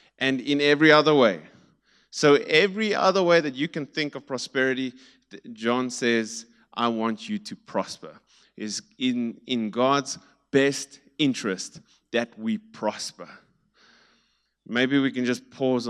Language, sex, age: English, male, 20-39